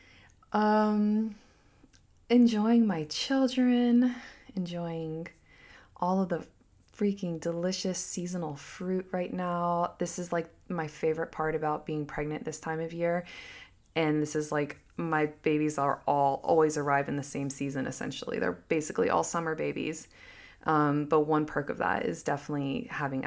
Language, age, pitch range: English, 20-39, 155-210 Hz